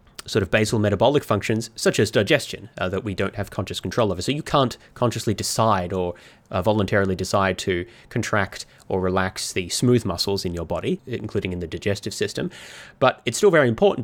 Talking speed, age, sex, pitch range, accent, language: 190 wpm, 20-39, male, 95-115 Hz, Australian, English